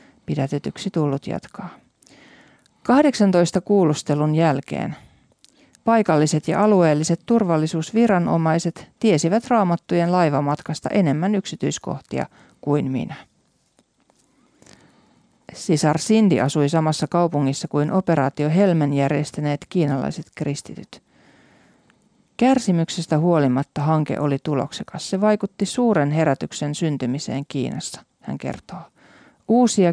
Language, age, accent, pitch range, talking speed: Finnish, 40-59, native, 150-200 Hz, 85 wpm